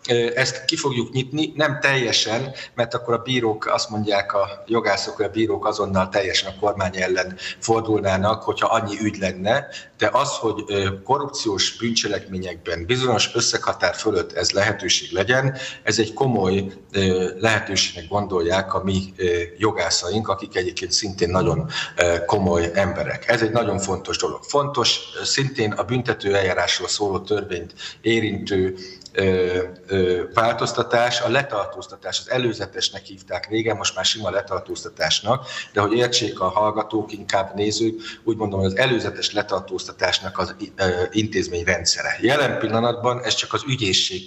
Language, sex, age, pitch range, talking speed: Hungarian, male, 50-69, 95-120 Hz, 135 wpm